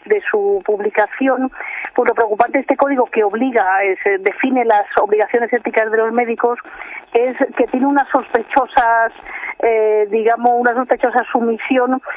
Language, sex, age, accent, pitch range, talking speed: Spanish, female, 40-59, Spanish, 220-260 Hz, 145 wpm